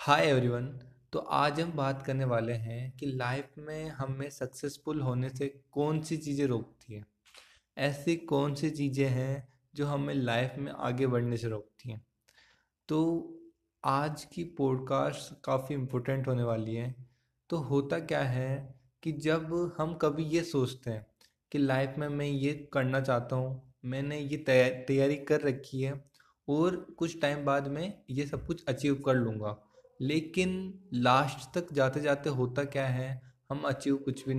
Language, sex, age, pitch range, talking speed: Hindi, male, 20-39, 130-155 Hz, 160 wpm